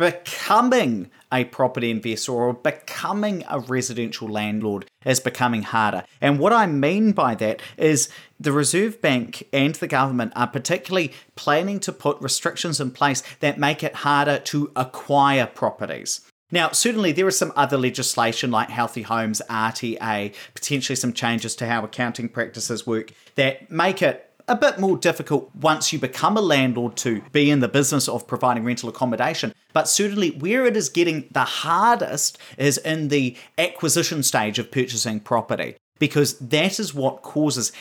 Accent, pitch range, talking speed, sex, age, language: Australian, 120-160 Hz, 160 wpm, male, 30-49, English